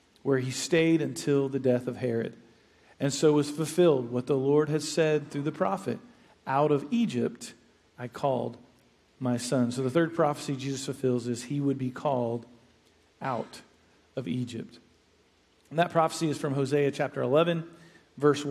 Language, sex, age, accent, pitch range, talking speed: English, male, 40-59, American, 135-165 Hz, 160 wpm